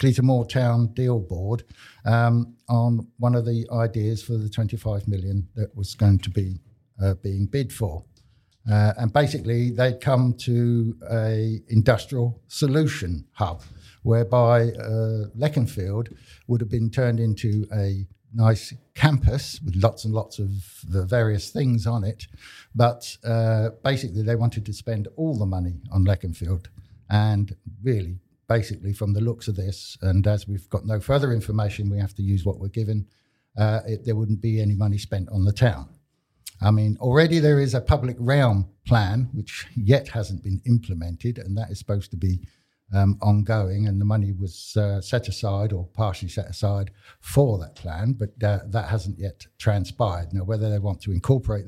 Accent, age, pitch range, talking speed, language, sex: British, 60-79, 100-120 Hz, 170 wpm, English, male